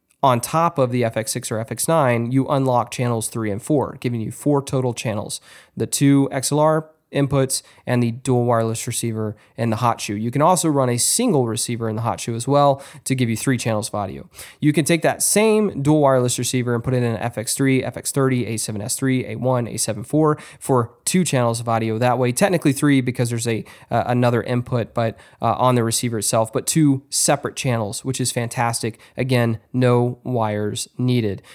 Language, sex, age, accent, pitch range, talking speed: English, male, 20-39, American, 115-135 Hz, 190 wpm